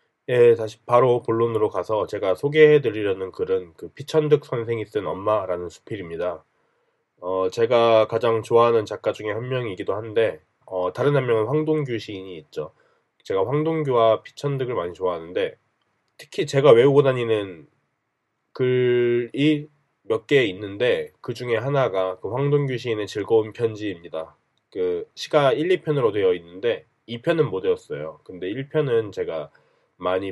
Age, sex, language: 20-39, male, Korean